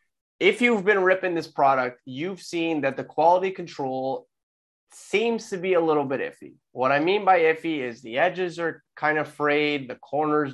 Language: English